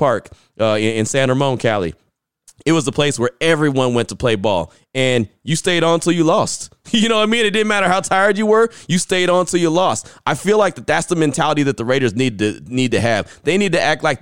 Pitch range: 130-160 Hz